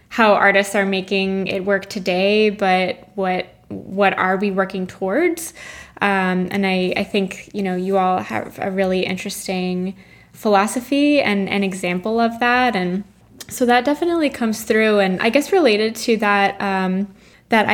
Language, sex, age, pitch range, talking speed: English, female, 10-29, 195-220 Hz, 160 wpm